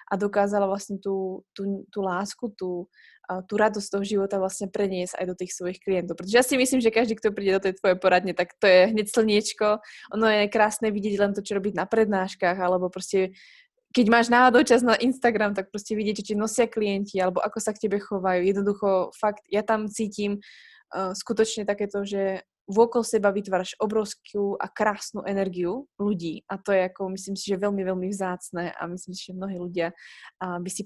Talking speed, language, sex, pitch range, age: 200 wpm, Slovak, female, 185-215 Hz, 20-39